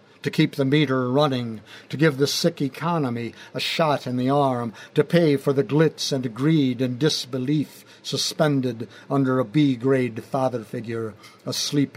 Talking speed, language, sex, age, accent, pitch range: 155 wpm, English, male, 60-79, American, 115-140 Hz